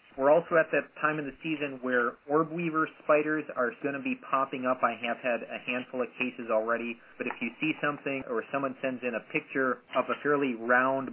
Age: 30-49